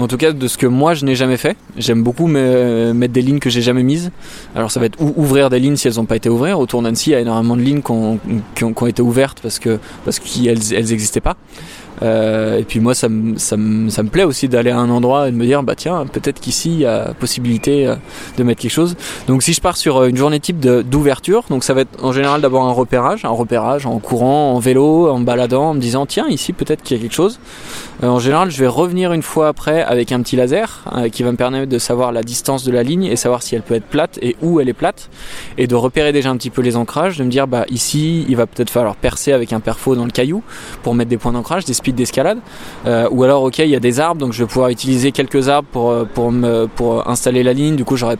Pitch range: 120-140 Hz